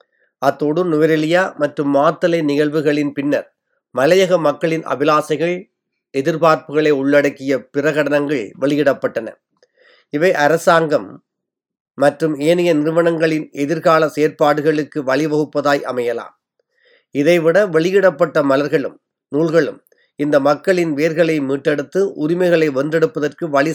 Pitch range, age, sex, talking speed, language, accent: 145-170 Hz, 30-49, male, 85 wpm, Tamil, native